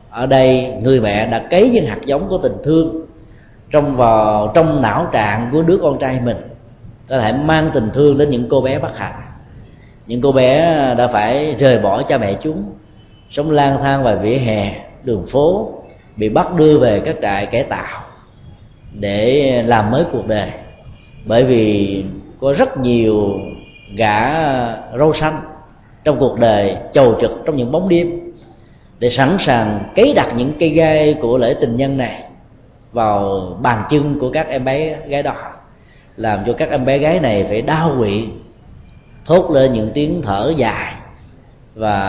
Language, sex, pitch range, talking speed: Vietnamese, male, 110-145 Hz, 170 wpm